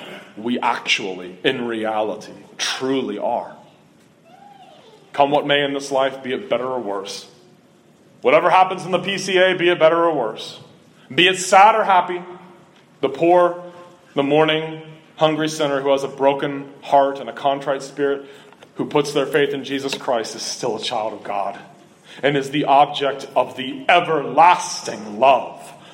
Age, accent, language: 30-49, American, English